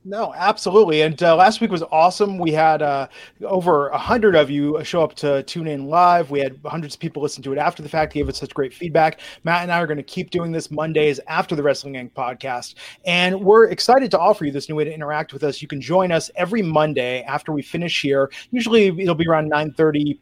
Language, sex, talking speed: English, male, 240 wpm